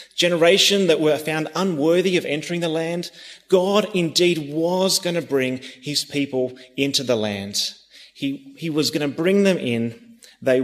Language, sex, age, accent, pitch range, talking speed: English, male, 30-49, Australian, 130-185 Hz, 165 wpm